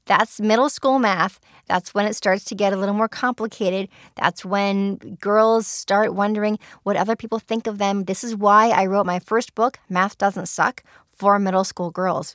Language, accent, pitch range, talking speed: English, American, 185-225 Hz, 195 wpm